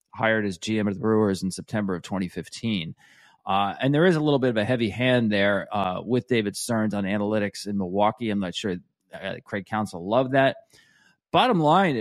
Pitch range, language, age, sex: 105-140 Hz, English, 40-59, male